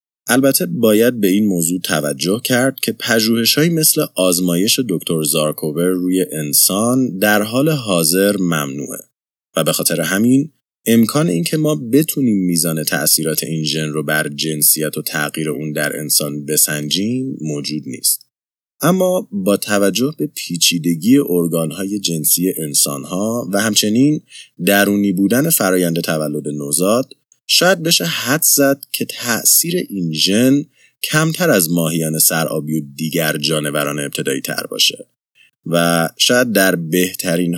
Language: Persian